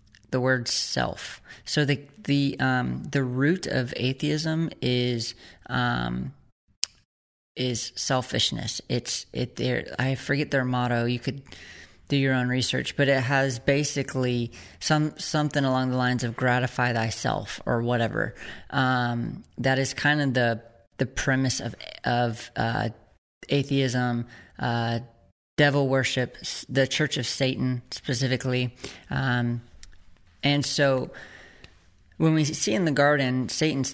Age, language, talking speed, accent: 20-39, English, 130 wpm, American